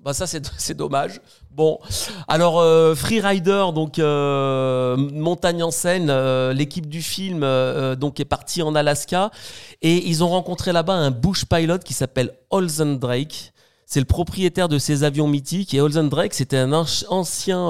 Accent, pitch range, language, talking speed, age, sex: French, 135-170 Hz, French, 165 wpm, 40-59, male